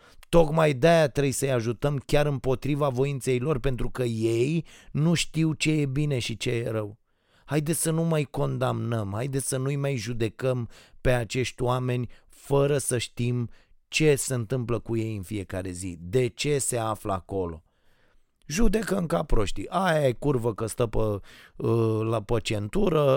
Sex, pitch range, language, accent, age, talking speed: male, 110-140 Hz, Romanian, native, 30-49, 160 wpm